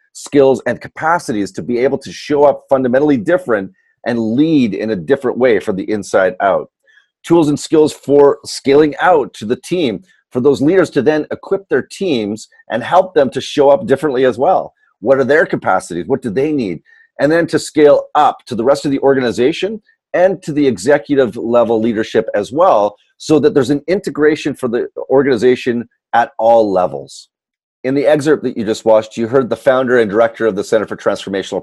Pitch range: 125-165 Hz